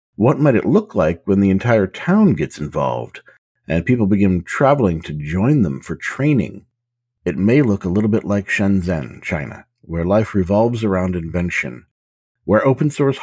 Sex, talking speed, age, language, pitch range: male, 165 wpm, 50-69, English, 85-120 Hz